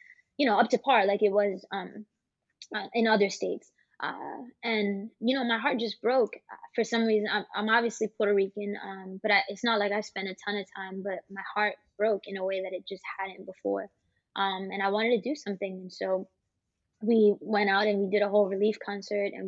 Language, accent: English, American